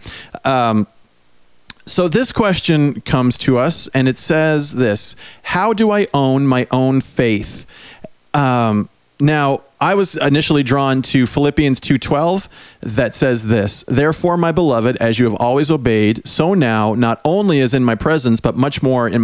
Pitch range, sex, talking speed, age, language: 110-145 Hz, male, 155 wpm, 40-59, English